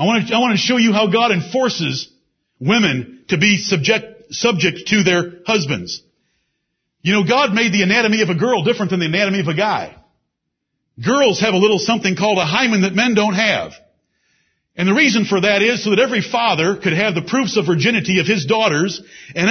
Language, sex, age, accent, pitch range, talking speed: English, male, 50-69, American, 175-230 Hz, 200 wpm